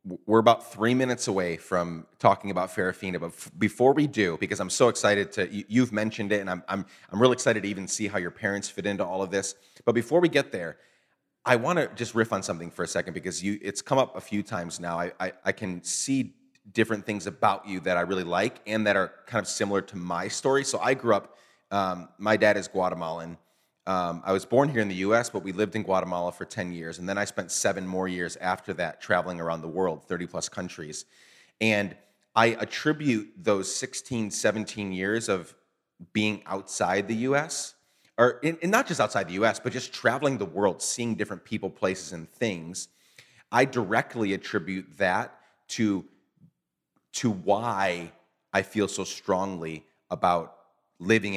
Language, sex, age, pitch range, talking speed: English, male, 30-49, 90-115 Hz, 190 wpm